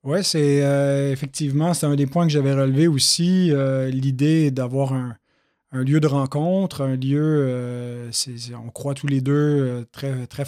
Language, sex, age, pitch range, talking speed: French, male, 30-49, 135-155 Hz, 170 wpm